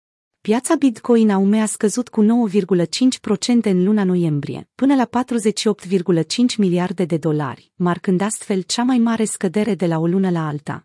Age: 30-49